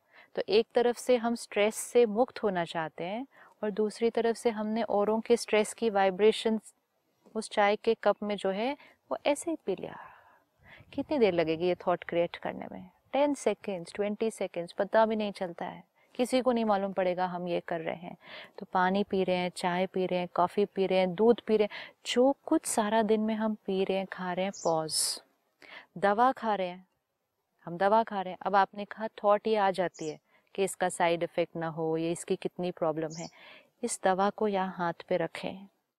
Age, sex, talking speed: 30-49, female, 210 wpm